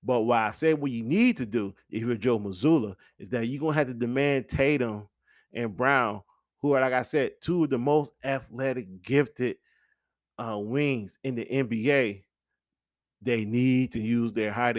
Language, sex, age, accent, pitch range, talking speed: English, male, 40-59, American, 115-145 Hz, 185 wpm